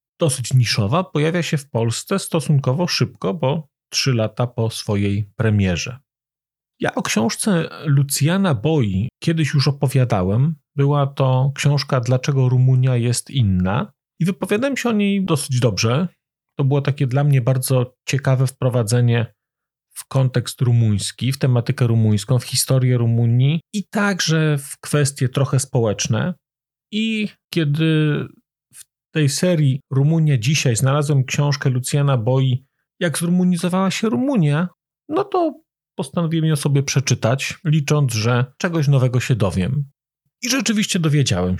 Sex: male